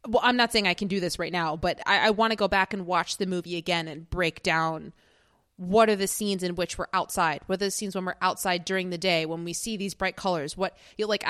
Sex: female